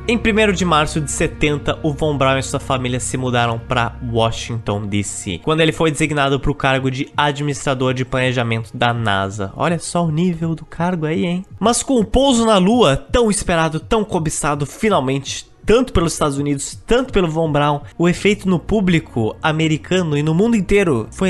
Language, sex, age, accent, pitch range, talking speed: Portuguese, male, 20-39, Brazilian, 130-185 Hz, 190 wpm